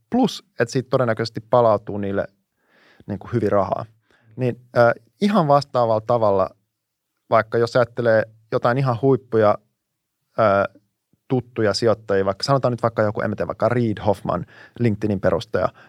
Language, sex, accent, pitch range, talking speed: Finnish, male, native, 105-125 Hz, 130 wpm